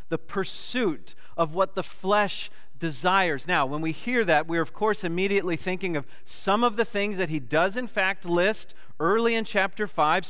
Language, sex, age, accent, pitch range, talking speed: English, male, 40-59, American, 115-190 Hz, 185 wpm